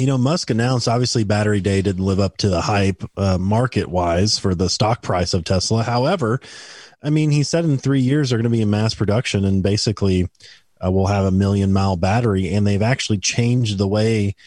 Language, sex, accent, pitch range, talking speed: English, male, American, 105-135 Hz, 205 wpm